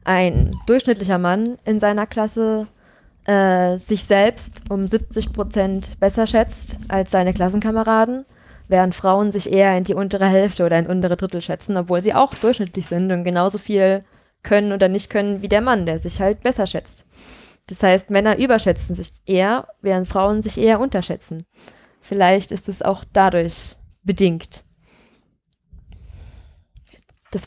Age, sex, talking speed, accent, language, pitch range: 20-39, female, 150 wpm, German, German, 180-205 Hz